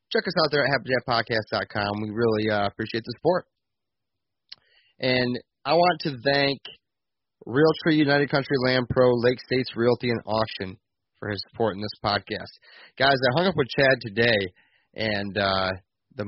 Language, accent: English, American